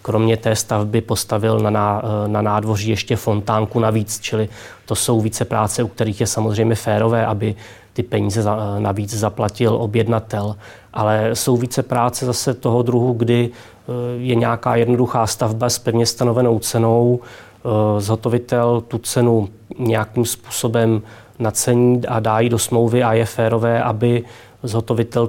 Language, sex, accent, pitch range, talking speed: Czech, male, native, 110-120 Hz, 135 wpm